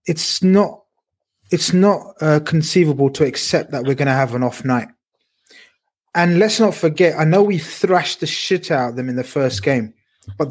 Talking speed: 195 wpm